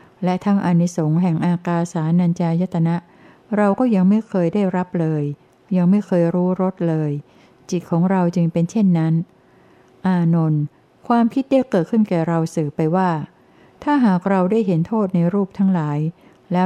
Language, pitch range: Thai, 165-190 Hz